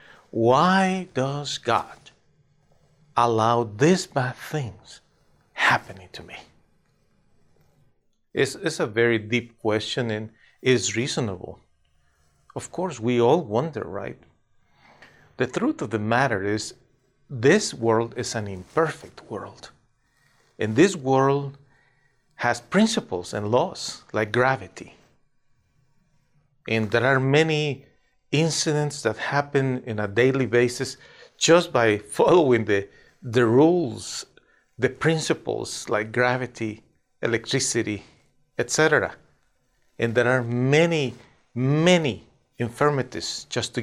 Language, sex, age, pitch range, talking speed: English, male, 40-59, 115-140 Hz, 105 wpm